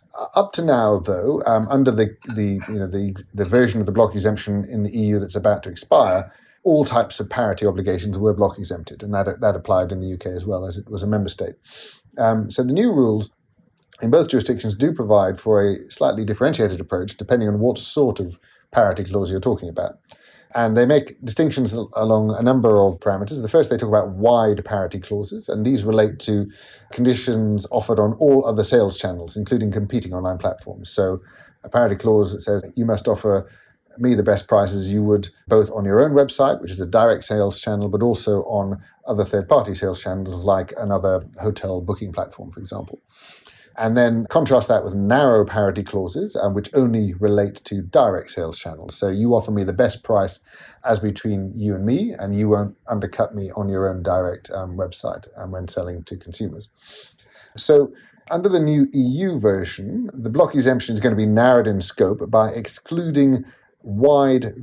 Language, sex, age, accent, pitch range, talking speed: English, male, 30-49, British, 100-115 Hz, 195 wpm